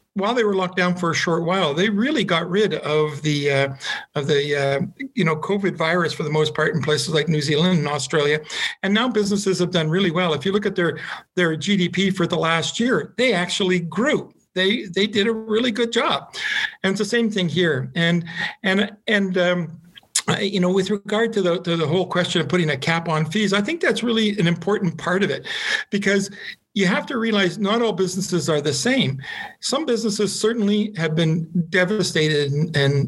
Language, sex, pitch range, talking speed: English, male, 155-200 Hz, 210 wpm